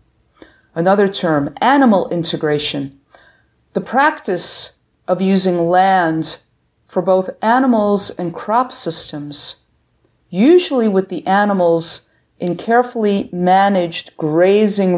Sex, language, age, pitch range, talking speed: female, English, 50-69, 175-245 Hz, 90 wpm